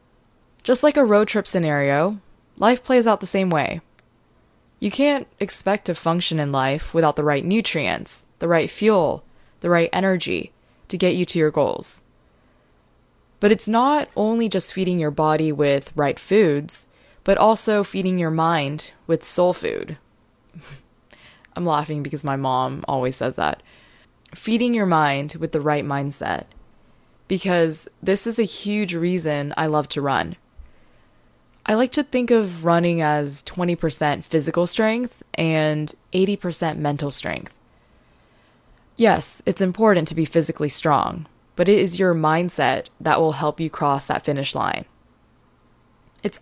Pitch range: 150-200 Hz